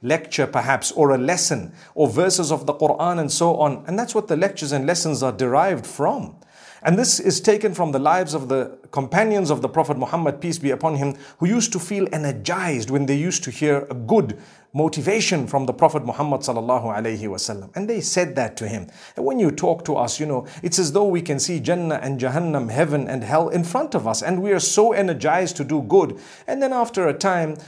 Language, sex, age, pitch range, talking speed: English, male, 50-69, 130-175 Hz, 225 wpm